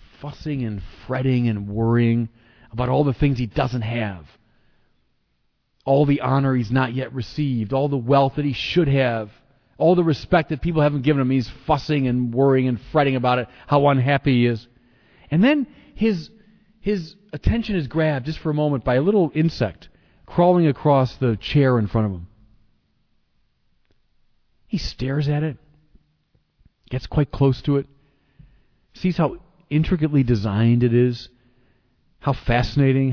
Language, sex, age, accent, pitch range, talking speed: English, male, 40-59, American, 120-160 Hz, 155 wpm